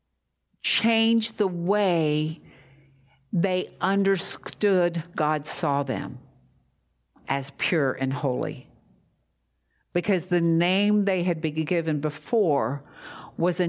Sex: female